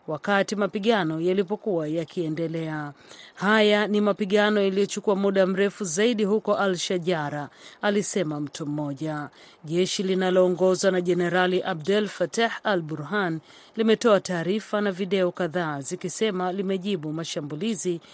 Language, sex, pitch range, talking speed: Swahili, female, 165-205 Hz, 105 wpm